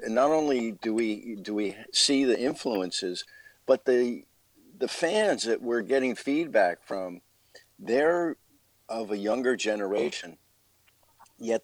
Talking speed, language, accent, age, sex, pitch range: 125 wpm, English, American, 50-69, male, 100-120 Hz